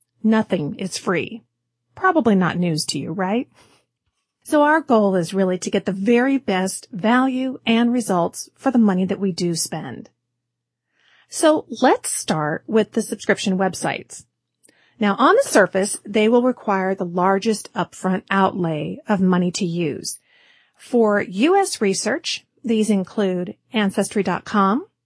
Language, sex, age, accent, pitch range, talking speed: English, female, 40-59, American, 185-245 Hz, 135 wpm